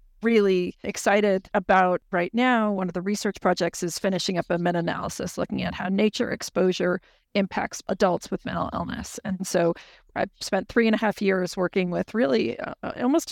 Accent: American